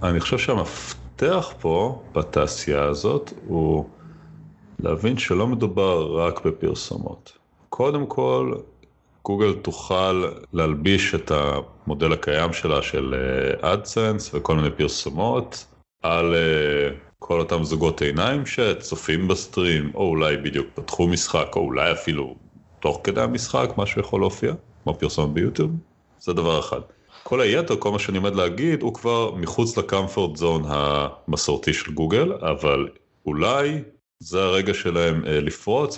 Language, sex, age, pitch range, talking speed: Hebrew, male, 30-49, 75-100 Hz, 125 wpm